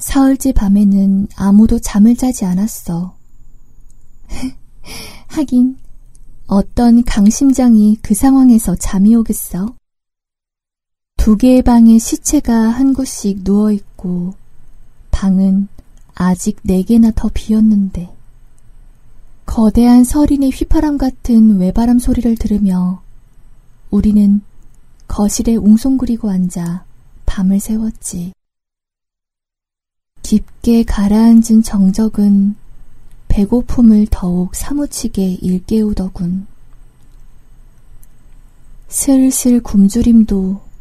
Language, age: Korean, 20-39